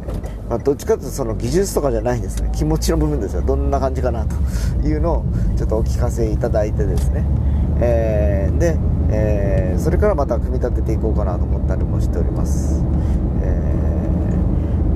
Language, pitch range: Japanese, 80-120 Hz